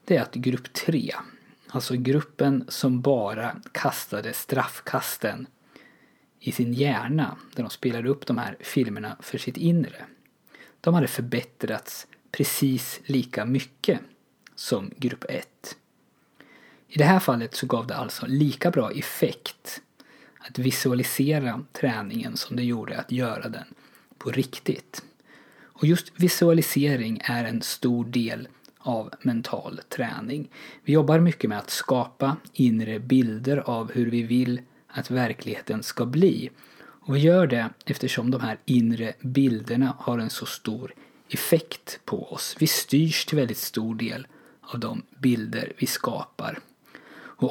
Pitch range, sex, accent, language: 120-140 Hz, male, native, Swedish